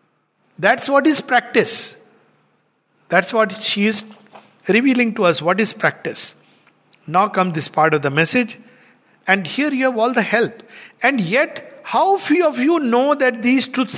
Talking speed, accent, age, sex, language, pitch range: 165 wpm, Indian, 50-69, male, English, 190-260 Hz